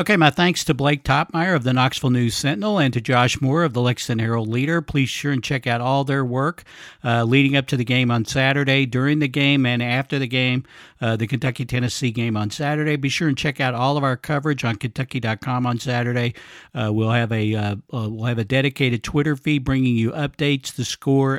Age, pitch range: 60-79, 120-140 Hz